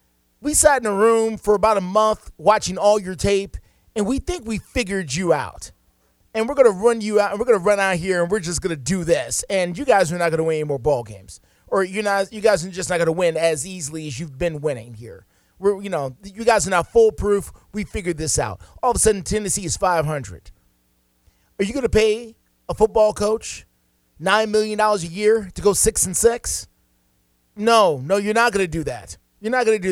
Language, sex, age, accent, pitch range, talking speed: English, male, 30-49, American, 155-215 Hz, 240 wpm